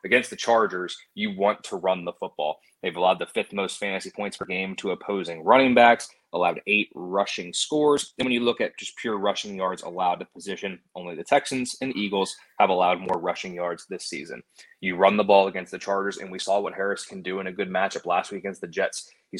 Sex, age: male, 20-39